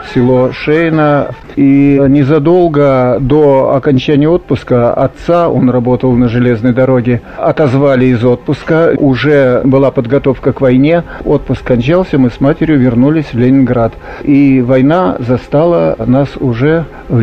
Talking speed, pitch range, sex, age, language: 120 wpm, 135-160 Hz, male, 50-69, Russian